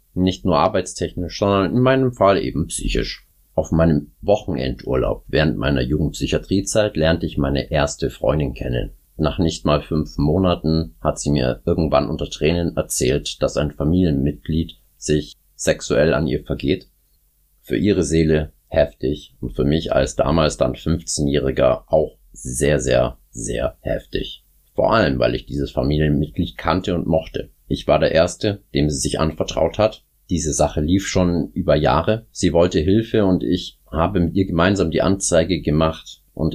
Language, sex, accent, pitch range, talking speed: German, male, German, 75-90 Hz, 155 wpm